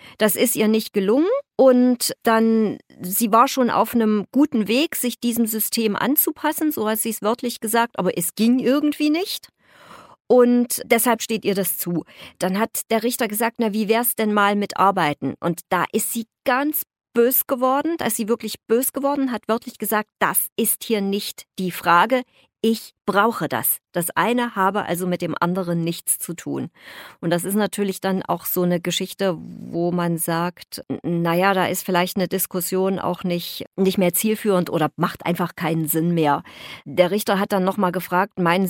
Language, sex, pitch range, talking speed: German, female, 185-235 Hz, 185 wpm